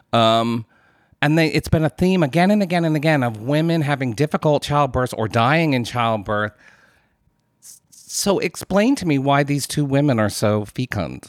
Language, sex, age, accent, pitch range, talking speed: English, male, 40-59, American, 110-150 Hz, 170 wpm